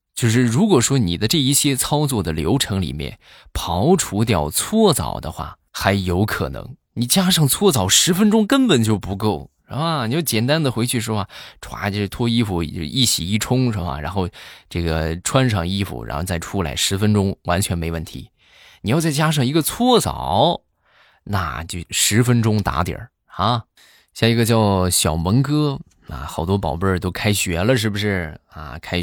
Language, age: Chinese, 20-39